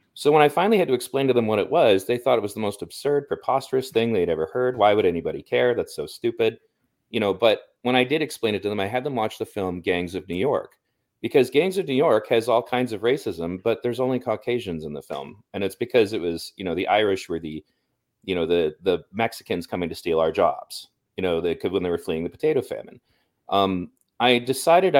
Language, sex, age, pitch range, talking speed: English, male, 30-49, 100-150 Hz, 250 wpm